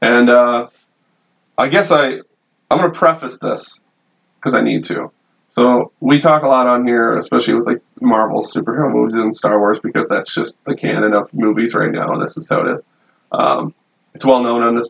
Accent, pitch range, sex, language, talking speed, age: American, 120-160 Hz, male, English, 210 wpm, 30-49